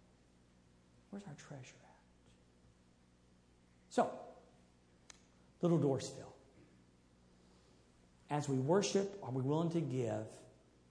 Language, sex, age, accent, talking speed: English, male, 60-79, American, 85 wpm